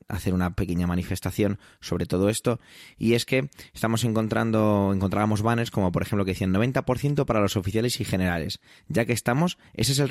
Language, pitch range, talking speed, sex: Spanish, 100-125 Hz, 185 wpm, male